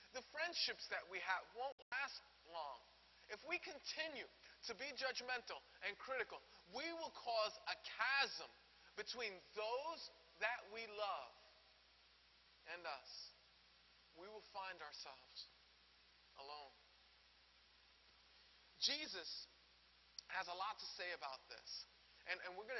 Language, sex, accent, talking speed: English, male, American, 120 wpm